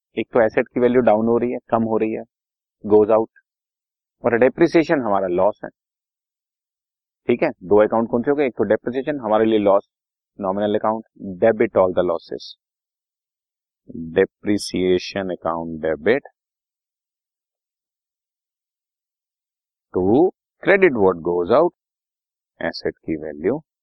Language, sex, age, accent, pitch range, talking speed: Hindi, male, 30-49, native, 100-165 Hz, 125 wpm